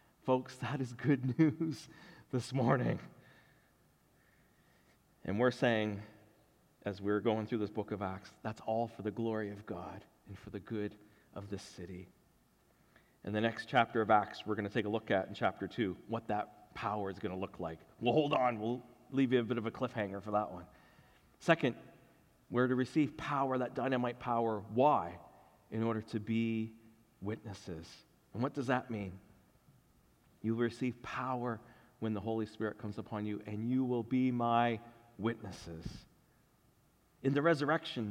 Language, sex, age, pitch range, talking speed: English, male, 40-59, 105-130 Hz, 170 wpm